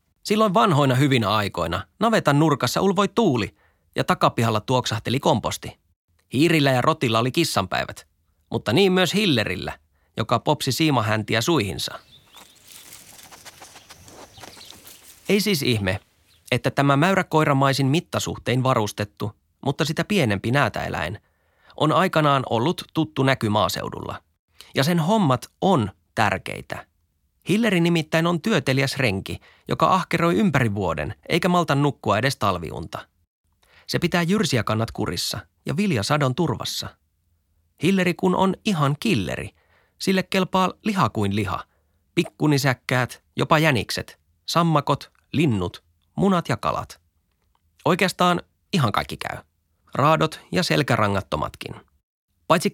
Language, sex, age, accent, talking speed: Finnish, male, 30-49, native, 110 wpm